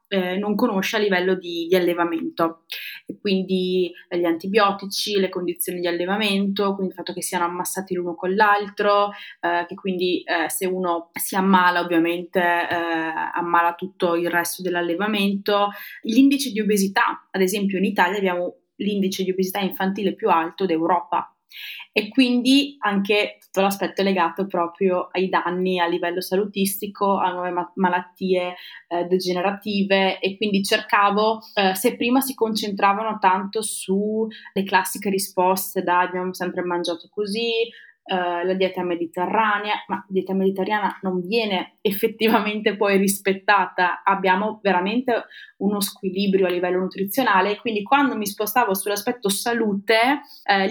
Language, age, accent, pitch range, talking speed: Italian, 20-39, native, 180-210 Hz, 140 wpm